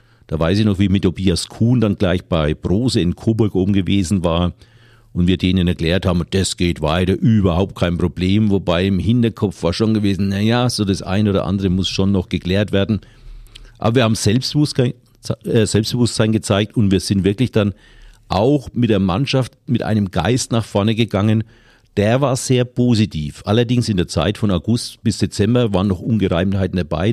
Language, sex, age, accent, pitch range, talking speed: German, male, 50-69, German, 95-115 Hz, 185 wpm